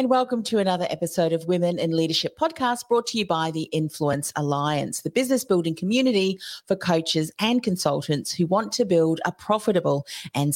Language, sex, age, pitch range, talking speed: English, female, 40-59, 160-215 Hz, 180 wpm